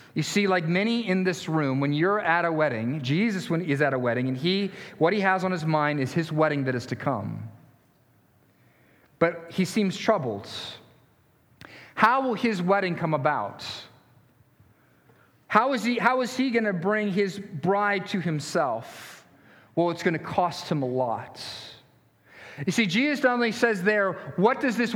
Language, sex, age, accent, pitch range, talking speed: English, male, 40-59, American, 155-210 Hz, 175 wpm